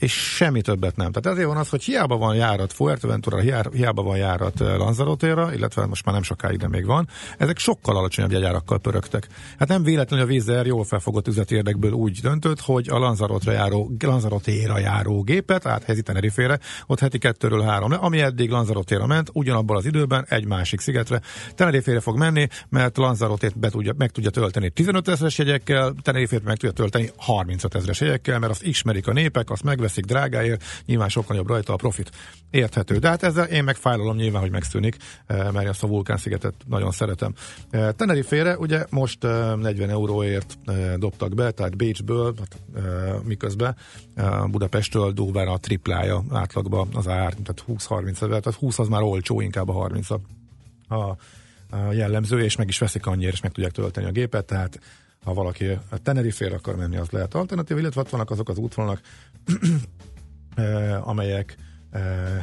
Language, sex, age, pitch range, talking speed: Hungarian, male, 50-69, 100-125 Hz, 165 wpm